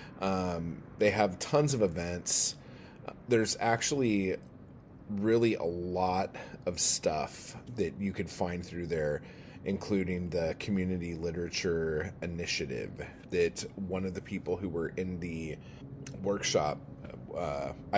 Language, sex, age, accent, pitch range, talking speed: English, male, 30-49, American, 90-120 Hz, 115 wpm